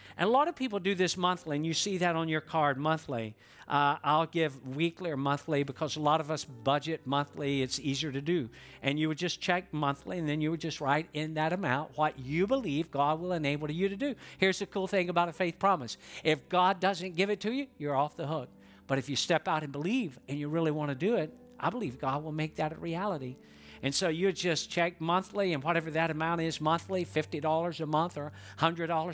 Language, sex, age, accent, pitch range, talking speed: English, male, 50-69, American, 140-180 Hz, 245 wpm